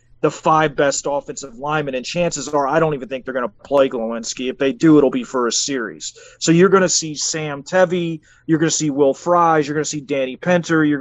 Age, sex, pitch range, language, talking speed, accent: 30-49, male, 140-160 Hz, English, 245 wpm, American